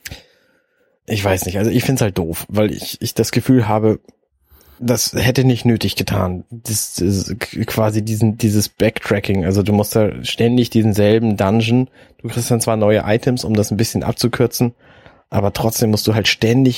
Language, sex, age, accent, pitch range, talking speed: German, male, 20-39, German, 100-120 Hz, 180 wpm